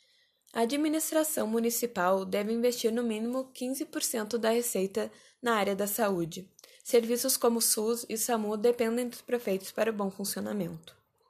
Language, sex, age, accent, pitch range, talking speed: Portuguese, female, 10-29, Brazilian, 200-250 Hz, 140 wpm